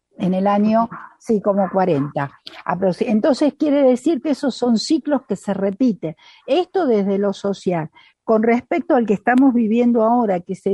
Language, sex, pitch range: Spanish, female, 195-245 Hz